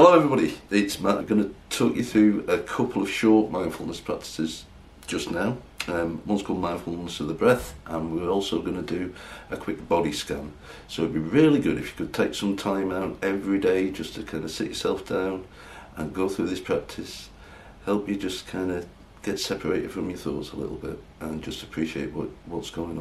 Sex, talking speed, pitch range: male, 210 wpm, 80-105 Hz